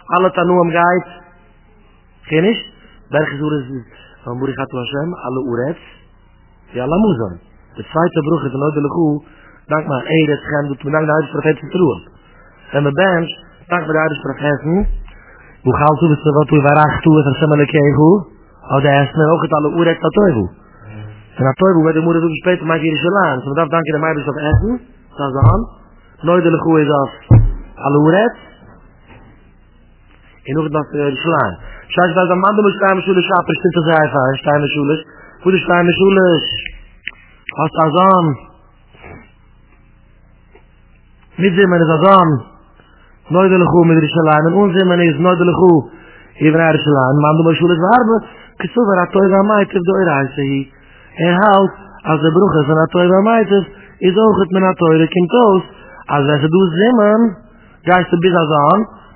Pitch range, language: 145-180 Hz, English